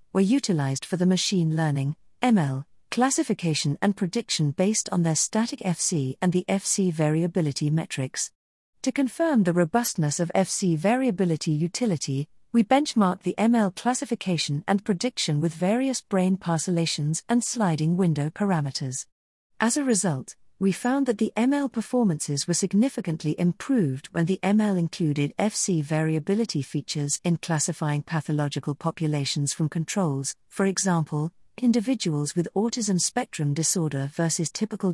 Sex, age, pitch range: female, 40-59, 155-205 Hz